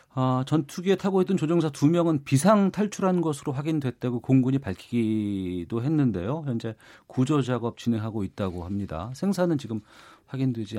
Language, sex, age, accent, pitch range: Korean, male, 40-59, native, 110-160 Hz